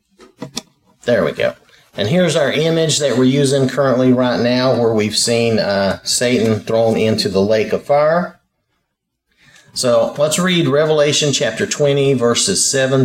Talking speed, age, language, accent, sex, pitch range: 145 wpm, 50-69, English, American, male, 120-160 Hz